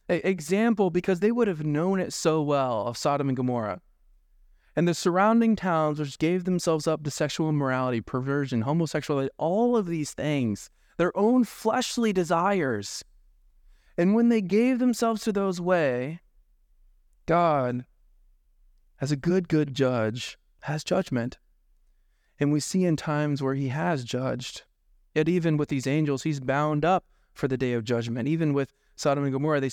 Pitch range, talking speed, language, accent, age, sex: 110-155 Hz, 155 wpm, English, American, 20-39, male